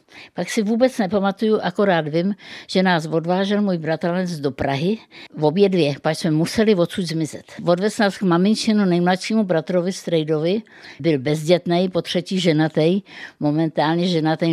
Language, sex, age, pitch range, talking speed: Czech, female, 60-79, 160-205 Hz, 145 wpm